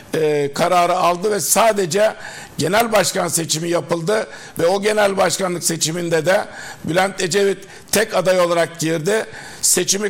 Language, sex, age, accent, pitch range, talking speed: Turkish, male, 60-79, native, 175-205 Hz, 130 wpm